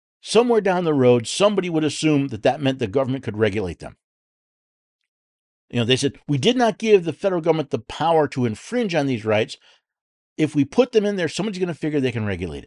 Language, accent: English, American